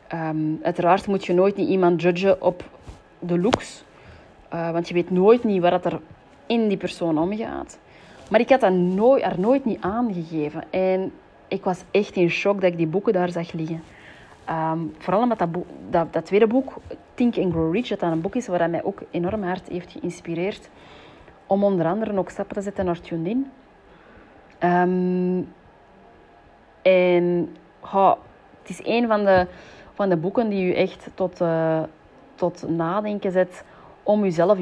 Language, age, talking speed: Dutch, 30-49, 180 wpm